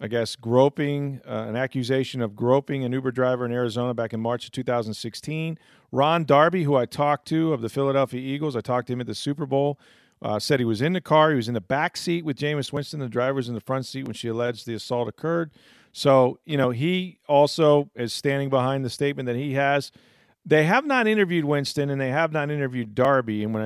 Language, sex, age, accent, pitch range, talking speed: English, male, 40-59, American, 120-145 Hz, 230 wpm